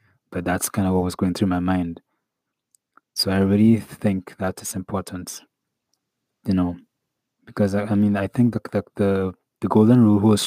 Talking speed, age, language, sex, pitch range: 180 wpm, 20-39, English, male, 95-105 Hz